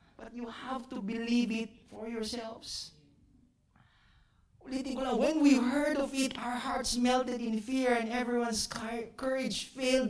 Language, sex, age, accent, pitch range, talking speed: English, male, 40-59, Filipino, 200-240 Hz, 130 wpm